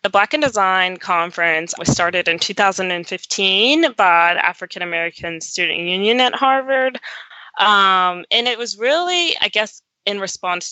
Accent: American